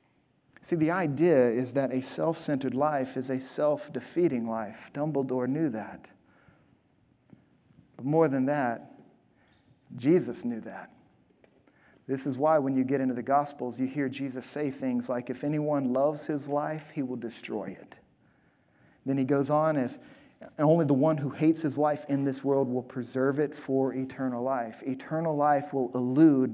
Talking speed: 160 wpm